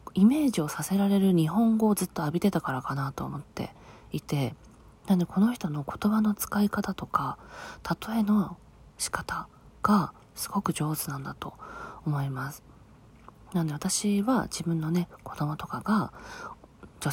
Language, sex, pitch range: Japanese, female, 155-210 Hz